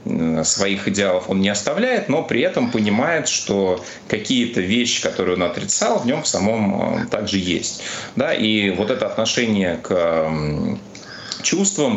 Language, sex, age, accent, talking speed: Russian, male, 30-49, native, 140 wpm